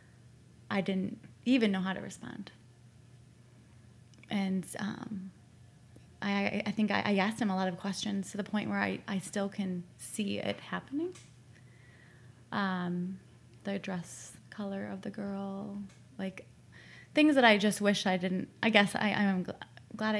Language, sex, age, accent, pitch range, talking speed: English, female, 20-39, American, 190-215 Hz, 155 wpm